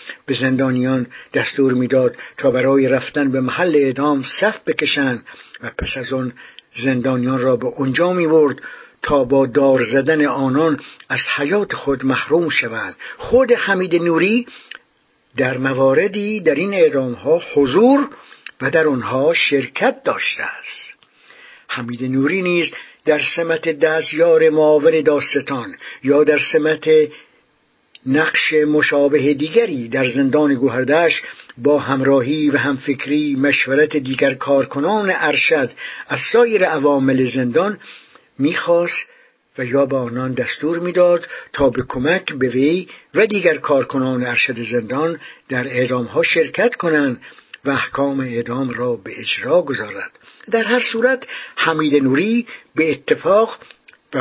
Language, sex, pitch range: English, male, 130-165 Hz